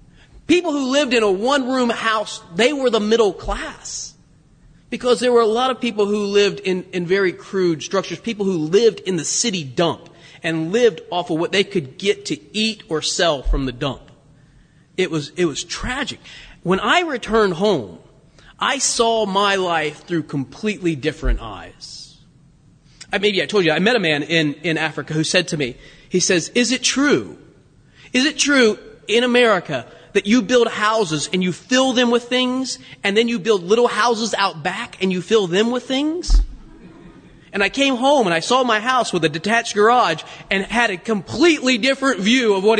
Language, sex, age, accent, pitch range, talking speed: English, male, 30-49, American, 155-225 Hz, 195 wpm